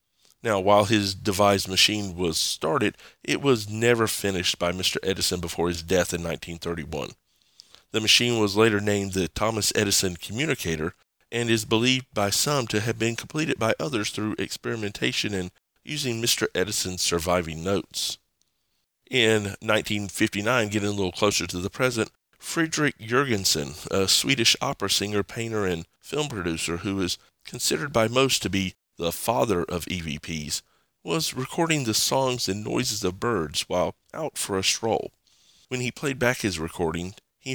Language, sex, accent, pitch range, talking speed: English, male, American, 90-115 Hz, 155 wpm